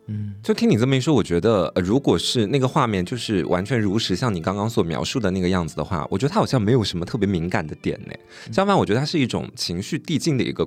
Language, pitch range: Chinese, 90-120 Hz